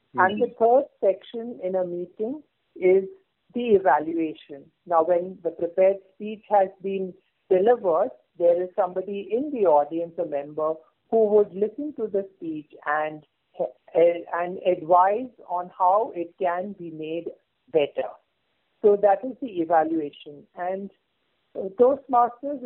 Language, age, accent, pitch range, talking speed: English, 50-69, Indian, 170-220 Hz, 135 wpm